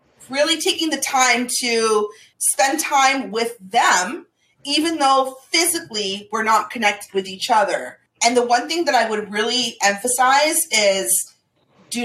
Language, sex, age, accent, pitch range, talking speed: English, female, 30-49, American, 220-290 Hz, 145 wpm